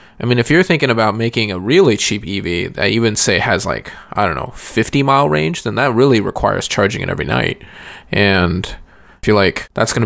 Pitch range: 100-125 Hz